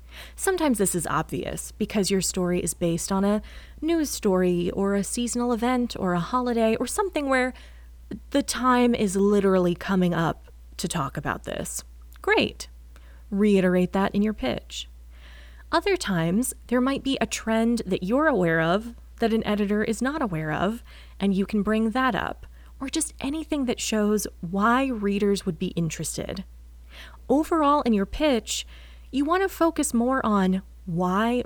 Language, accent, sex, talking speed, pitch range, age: English, American, female, 160 wpm, 170-245 Hz, 20-39